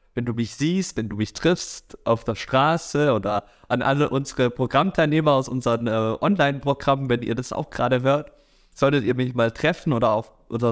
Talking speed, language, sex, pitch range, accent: 190 wpm, German, male, 115-150 Hz, German